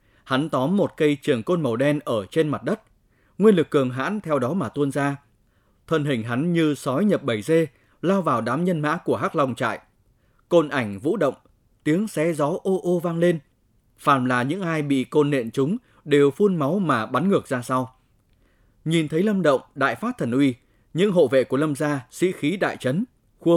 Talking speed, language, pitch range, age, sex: 215 wpm, Vietnamese, 120-165 Hz, 20-39, male